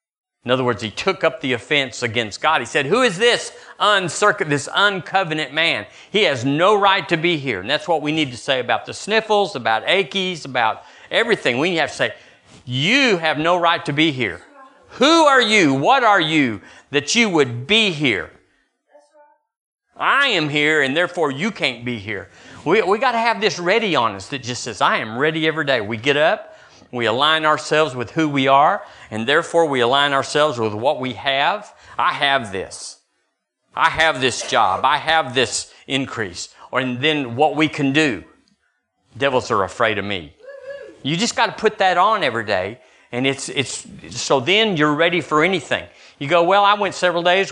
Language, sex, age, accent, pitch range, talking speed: English, male, 50-69, American, 135-190 Hz, 195 wpm